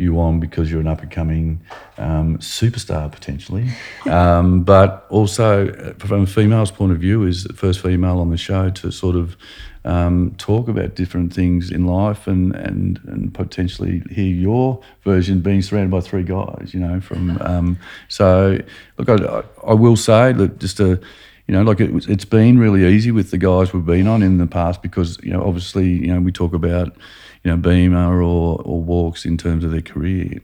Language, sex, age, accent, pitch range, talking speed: English, male, 50-69, Australian, 85-100 Hz, 190 wpm